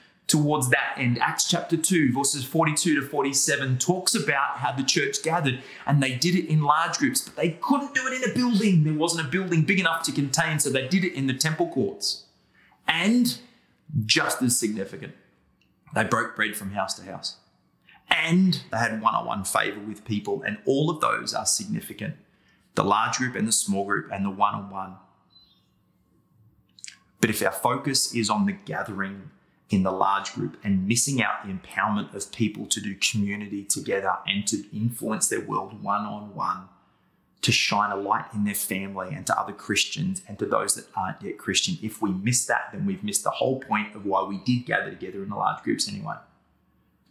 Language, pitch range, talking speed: English, 105-165 Hz, 190 wpm